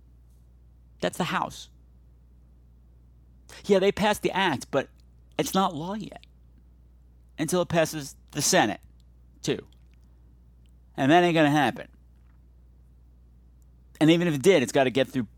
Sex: male